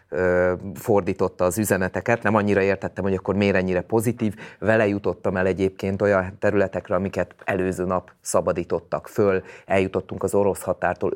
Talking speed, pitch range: 135 wpm, 95-105 Hz